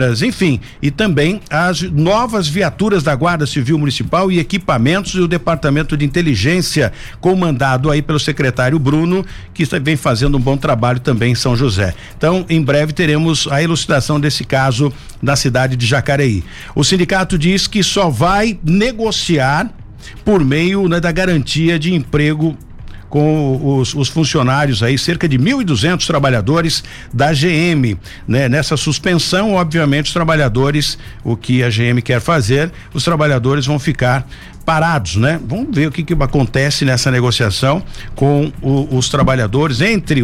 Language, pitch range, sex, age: Portuguese, 130-165 Hz, male, 60-79